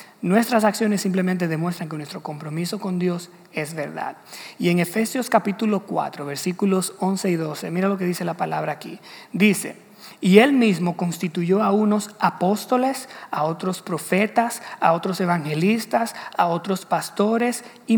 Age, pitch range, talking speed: 40-59, 175-220 Hz, 150 wpm